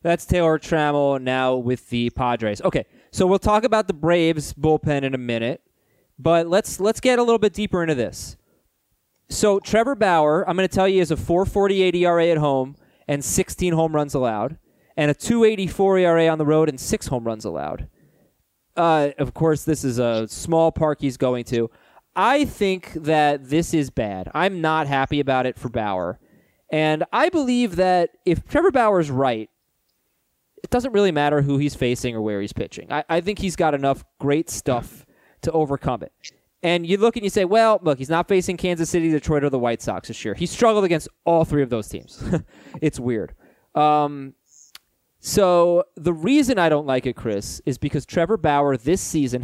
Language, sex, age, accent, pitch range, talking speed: English, male, 20-39, American, 130-180 Hz, 190 wpm